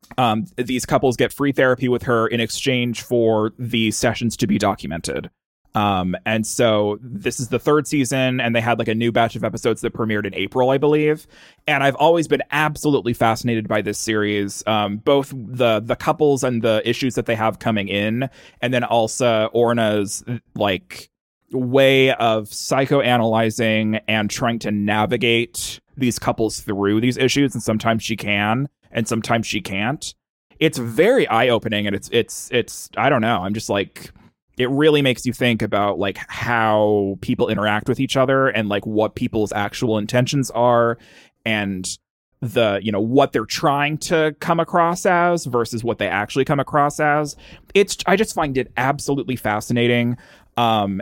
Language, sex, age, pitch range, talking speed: English, male, 20-39, 110-130 Hz, 170 wpm